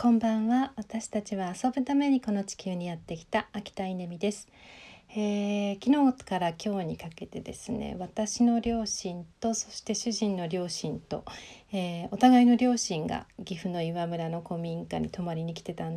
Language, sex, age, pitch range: Japanese, female, 40-59, 170-215 Hz